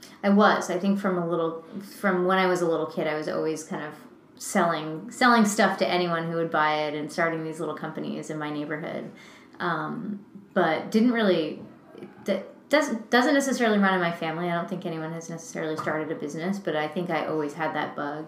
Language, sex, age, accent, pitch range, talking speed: English, female, 20-39, American, 160-195 Hz, 215 wpm